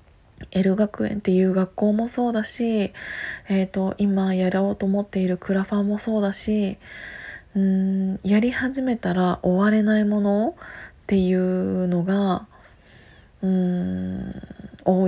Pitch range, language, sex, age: 180-210 Hz, Japanese, female, 20-39